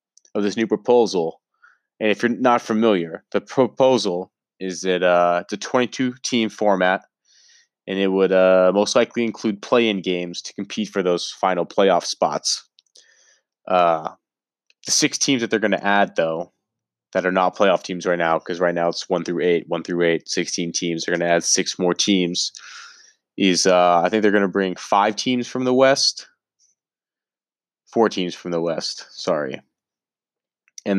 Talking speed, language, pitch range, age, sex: 175 wpm, English, 90-105 Hz, 20-39, male